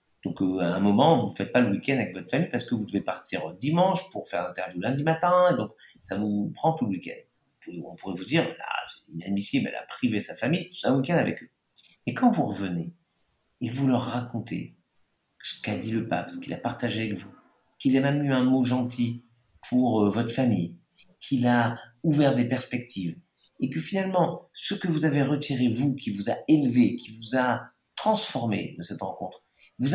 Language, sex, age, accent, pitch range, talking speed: French, male, 50-69, French, 120-165 Hz, 210 wpm